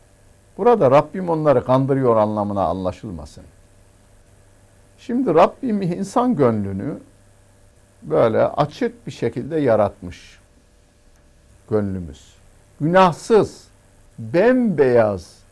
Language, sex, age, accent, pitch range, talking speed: Turkish, male, 60-79, native, 100-135 Hz, 70 wpm